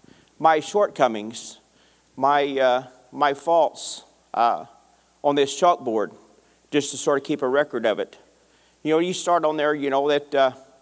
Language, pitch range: English, 130-165 Hz